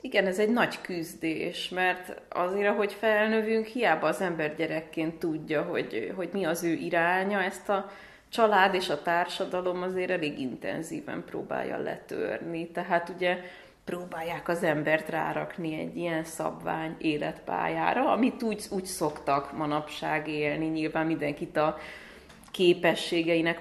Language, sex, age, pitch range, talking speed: Hungarian, female, 30-49, 155-185 Hz, 130 wpm